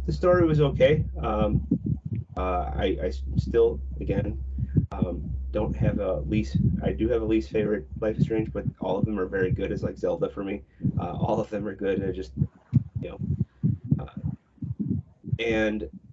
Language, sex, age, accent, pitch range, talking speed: English, male, 30-49, American, 95-125 Hz, 180 wpm